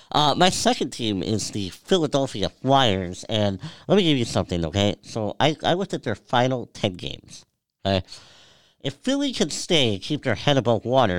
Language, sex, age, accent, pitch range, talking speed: English, male, 50-69, American, 100-140 Hz, 190 wpm